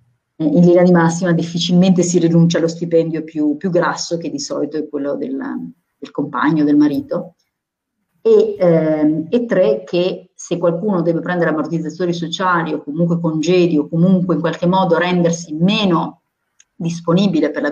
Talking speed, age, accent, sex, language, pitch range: 155 wpm, 30-49, native, female, Italian, 155-180 Hz